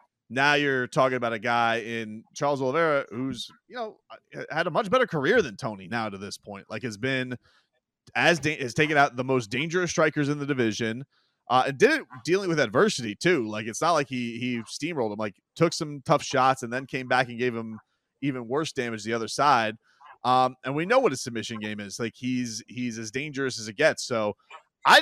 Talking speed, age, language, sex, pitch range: 220 wpm, 30-49, English, male, 120-150 Hz